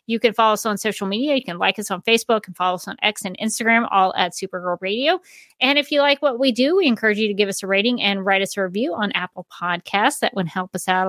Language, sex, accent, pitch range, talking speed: English, female, American, 200-260 Hz, 280 wpm